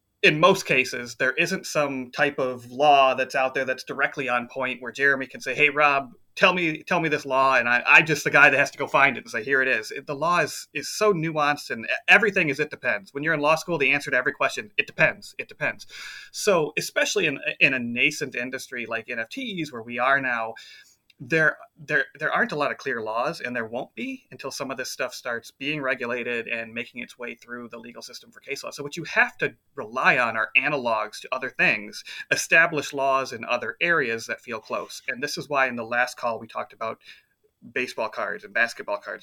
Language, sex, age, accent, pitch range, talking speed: English, male, 30-49, American, 120-160 Hz, 235 wpm